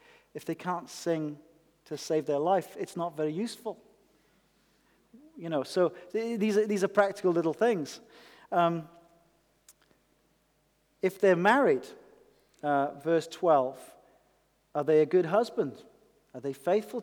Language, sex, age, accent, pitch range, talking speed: English, male, 40-59, British, 150-195 Hz, 125 wpm